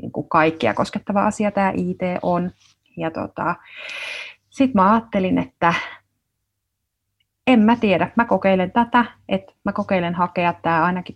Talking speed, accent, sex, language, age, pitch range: 130 wpm, native, female, Finnish, 30-49, 155-185 Hz